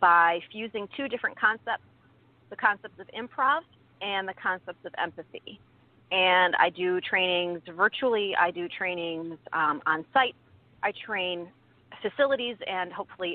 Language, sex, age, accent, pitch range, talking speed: English, female, 30-49, American, 170-205 Hz, 135 wpm